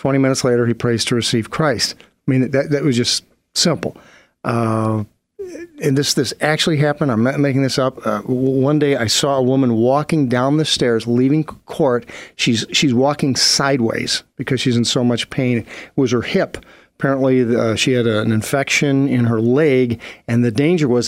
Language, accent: English, American